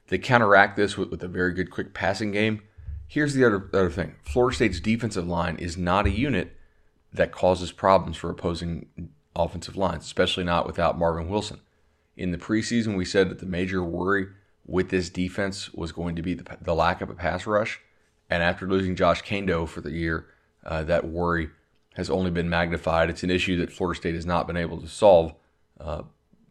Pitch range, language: 85-95 Hz, English